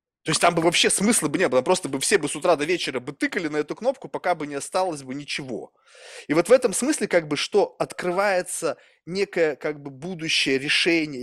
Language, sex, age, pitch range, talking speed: Russian, male, 20-39, 150-195 Hz, 225 wpm